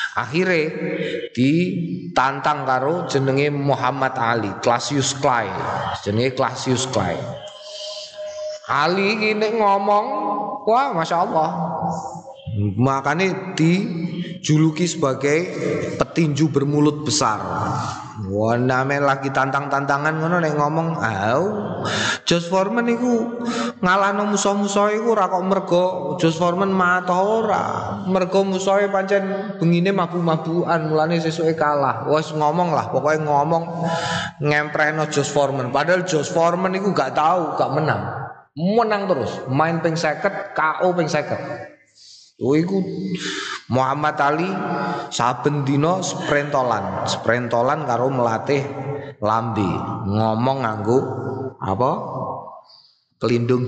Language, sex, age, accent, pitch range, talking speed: Indonesian, male, 20-39, native, 130-180 Hz, 100 wpm